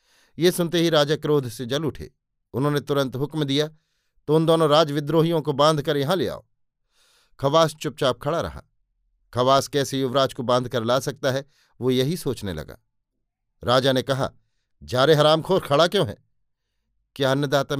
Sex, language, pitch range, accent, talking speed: male, Hindi, 130-160 Hz, native, 165 wpm